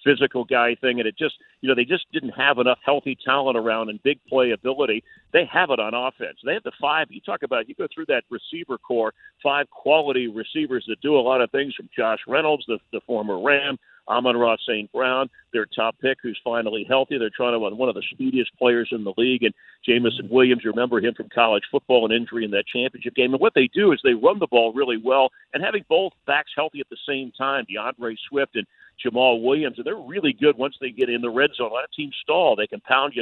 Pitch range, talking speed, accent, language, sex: 120-150 Hz, 240 wpm, American, English, male